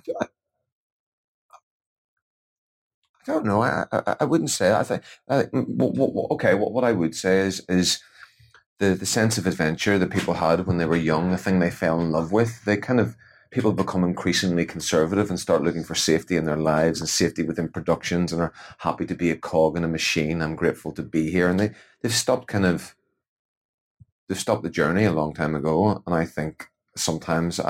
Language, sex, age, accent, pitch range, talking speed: English, male, 30-49, British, 80-95 Hz, 205 wpm